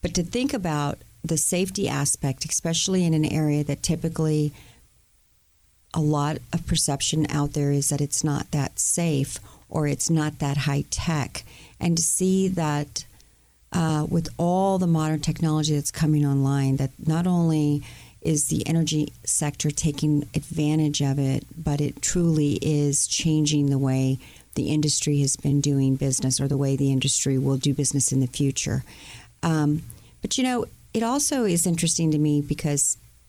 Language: English